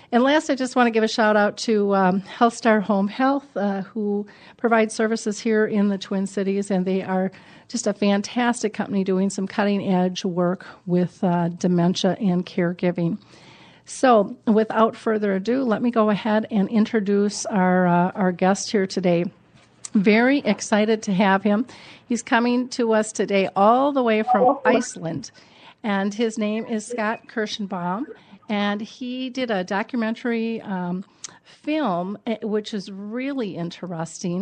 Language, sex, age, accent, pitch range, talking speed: English, female, 50-69, American, 195-230 Hz, 155 wpm